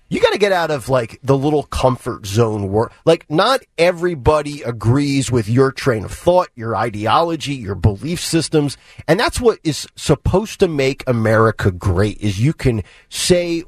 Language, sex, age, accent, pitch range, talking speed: English, male, 30-49, American, 125-185 Hz, 170 wpm